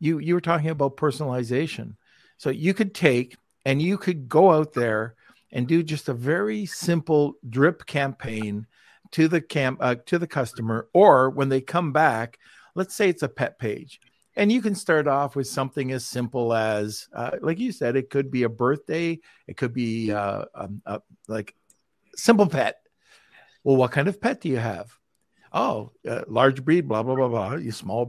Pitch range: 125-165 Hz